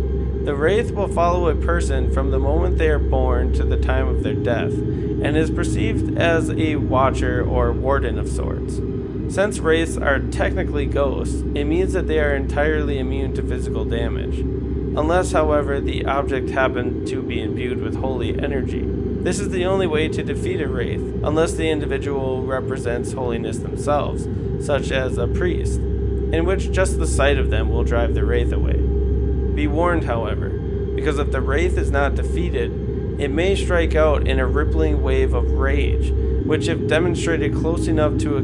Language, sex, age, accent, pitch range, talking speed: English, male, 20-39, American, 65-90 Hz, 175 wpm